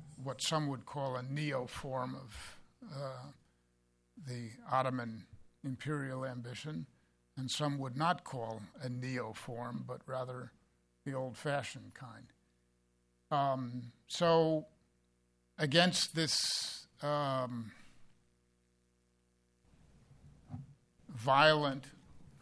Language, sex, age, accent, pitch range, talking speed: English, male, 50-69, American, 105-150 Hz, 80 wpm